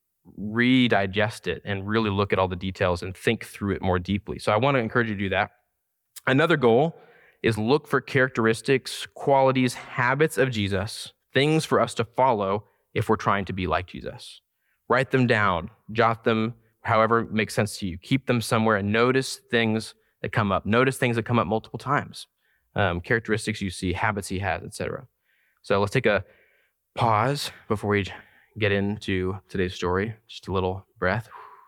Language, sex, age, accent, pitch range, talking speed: English, male, 20-39, American, 90-115 Hz, 185 wpm